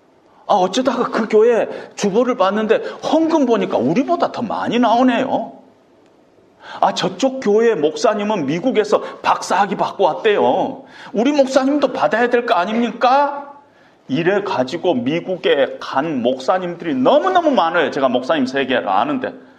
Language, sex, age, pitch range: Korean, male, 40-59, 230-310 Hz